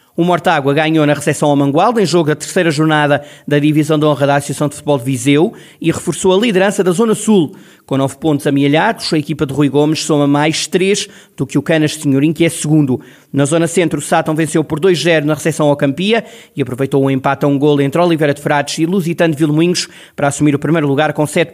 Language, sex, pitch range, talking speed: Portuguese, male, 150-180 Hz, 235 wpm